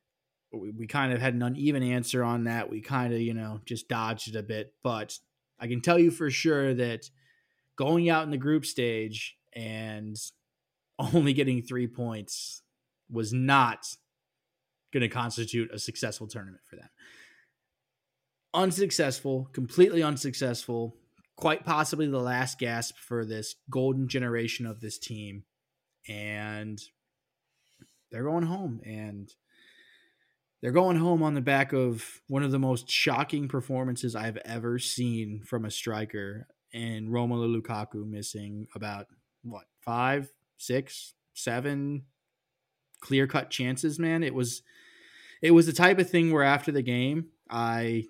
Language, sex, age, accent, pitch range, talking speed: English, male, 20-39, American, 115-140 Hz, 140 wpm